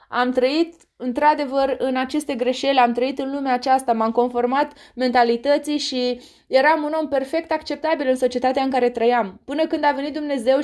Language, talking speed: Romanian, 170 wpm